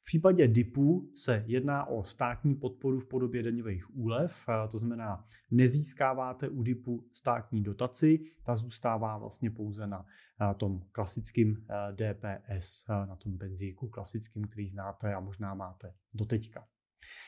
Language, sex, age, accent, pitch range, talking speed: Czech, male, 30-49, native, 110-135 Hz, 130 wpm